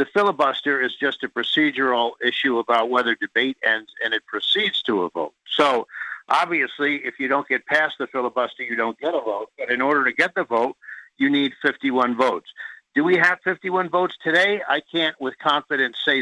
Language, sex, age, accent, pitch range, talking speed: English, male, 60-79, American, 125-155 Hz, 195 wpm